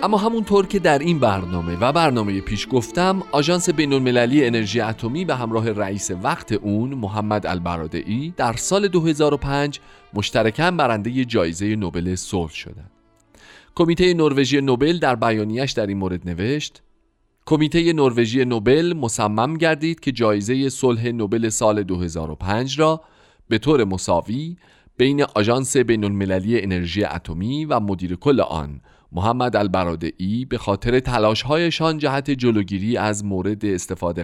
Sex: male